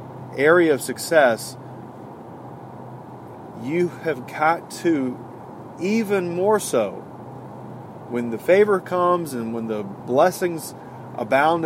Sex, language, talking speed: male, English, 100 wpm